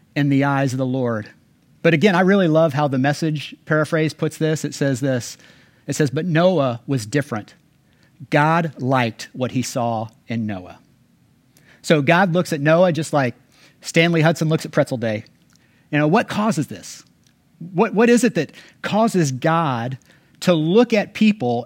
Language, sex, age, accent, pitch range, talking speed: English, male, 40-59, American, 135-175 Hz, 170 wpm